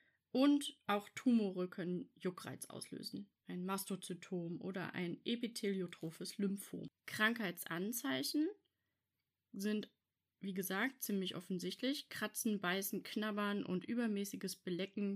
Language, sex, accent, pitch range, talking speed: German, female, German, 190-250 Hz, 95 wpm